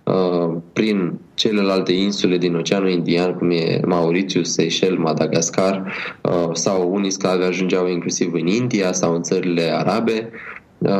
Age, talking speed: 20-39, 120 wpm